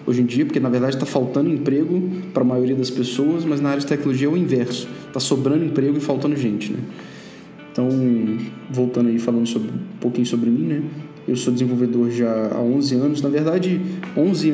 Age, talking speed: 20-39, 200 wpm